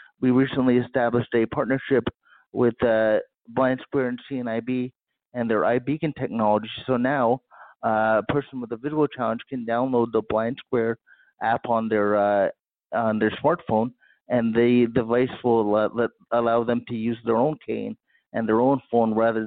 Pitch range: 115-130 Hz